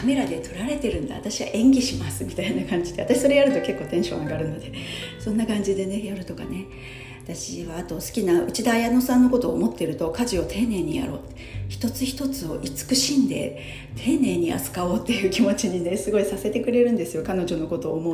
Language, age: Japanese, 40-59